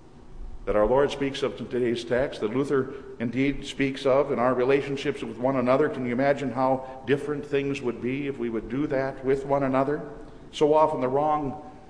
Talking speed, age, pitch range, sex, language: 195 wpm, 50-69, 130-150 Hz, male, English